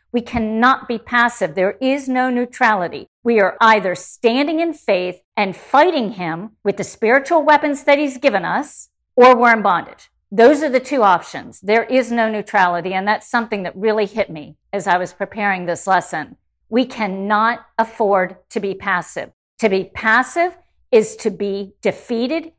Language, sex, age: English, female, 50-69